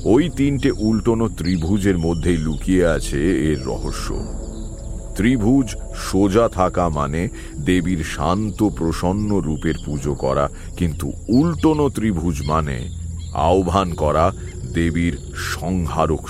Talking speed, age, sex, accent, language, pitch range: 105 wpm, 40-59, male, Indian, English, 75-95 Hz